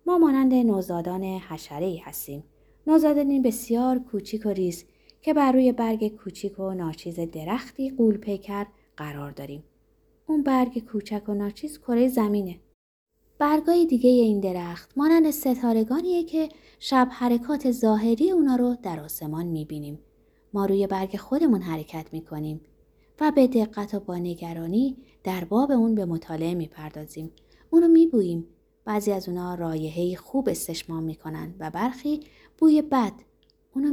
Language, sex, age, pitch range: Persian, female, 20-39, 170-255 Hz